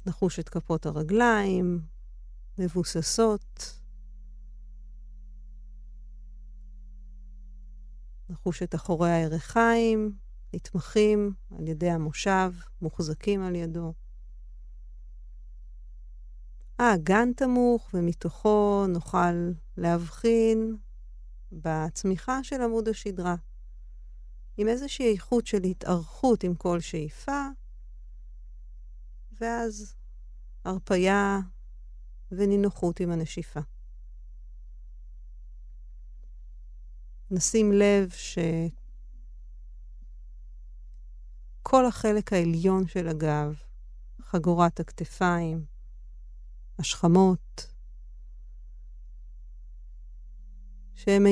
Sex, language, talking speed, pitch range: female, Hebrew, 55 wpm, 150-205 Hz